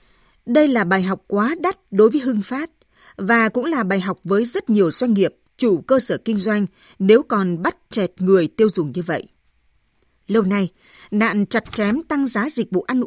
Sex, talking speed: female, 200 wpm